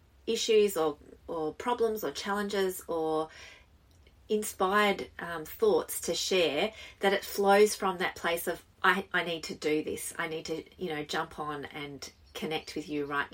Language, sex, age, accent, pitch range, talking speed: English, female, 30-49, Australian, 155-200 Hz, 165 wpm